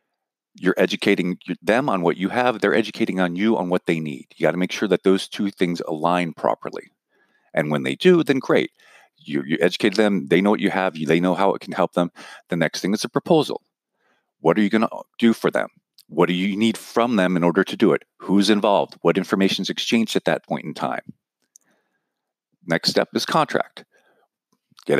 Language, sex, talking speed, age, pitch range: English, male, 215 wpm, 50-69, 85-110 Hz